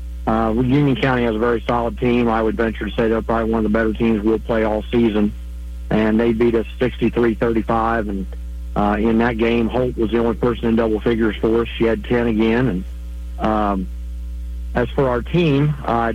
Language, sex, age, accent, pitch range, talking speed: English, male, 50-69, American, 105-120 Hz, 205 wpm